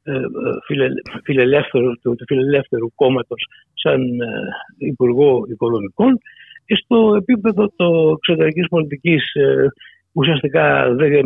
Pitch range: 160-225 Hz